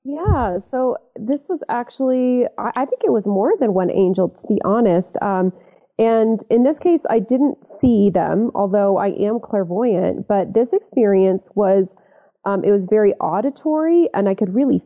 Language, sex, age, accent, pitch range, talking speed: English, female, 30-49, American, 190-235 Hz, 170 wpm